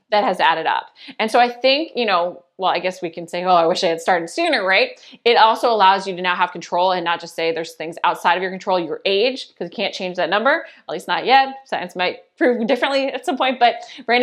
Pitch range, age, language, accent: 180-245 Hz, 20-39, English, American